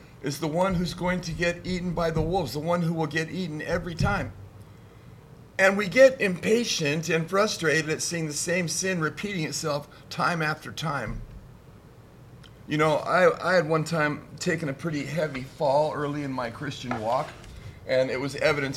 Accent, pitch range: American, 120-160 Hz